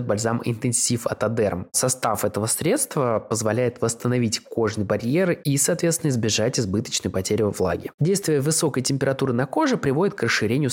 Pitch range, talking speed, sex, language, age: 105-140 Hz, 140 wpm, male, Russian, 20-39